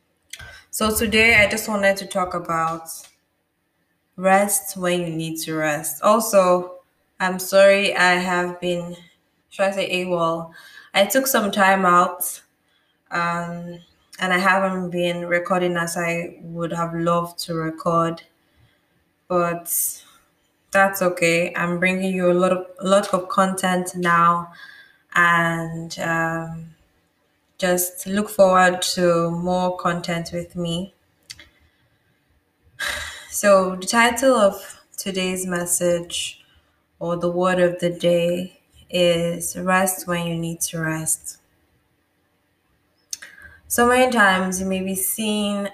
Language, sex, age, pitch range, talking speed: English, female, 20-39, 170-190 Hz, 120 wpm